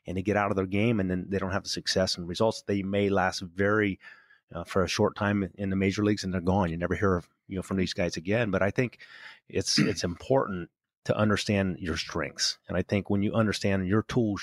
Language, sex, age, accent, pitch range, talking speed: English, male, 30-49, American, 95-110 Hz, 250 wpm